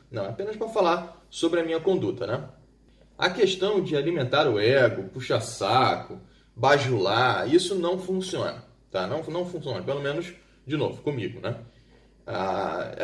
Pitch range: 125-180 Hz